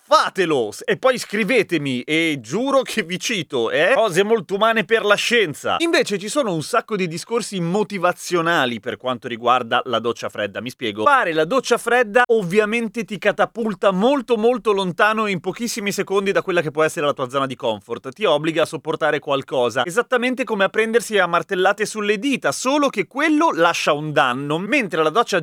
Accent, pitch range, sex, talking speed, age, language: native, 150-235 Hz, male, 180 wpm, 30-49, Italian